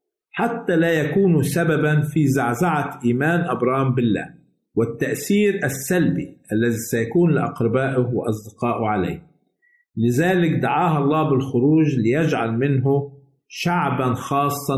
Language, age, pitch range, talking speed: Arabic, 50-69, 125-165 Hz, 95 wpm